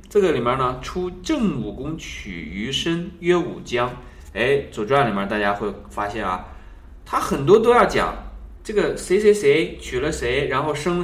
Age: 20-39